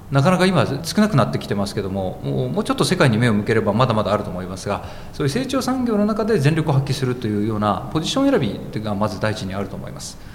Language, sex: Japanese, male